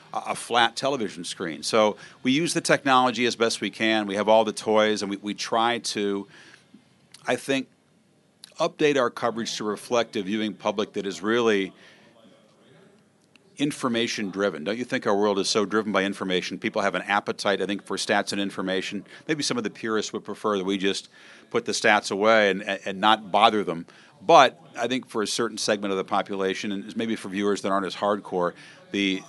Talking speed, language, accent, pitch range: 195 wpm, English, American, 95-115 Hz